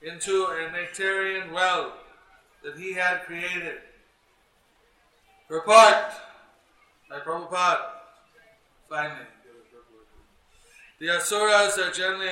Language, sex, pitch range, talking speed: English, male, 175-190 Hz, 85 wpm